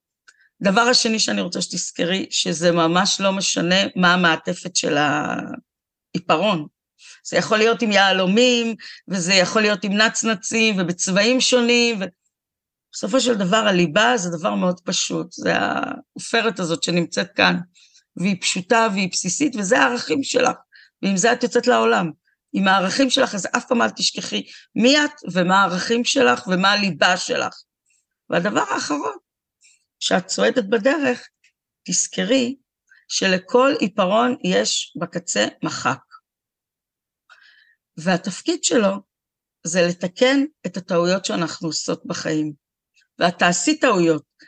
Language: Hebrew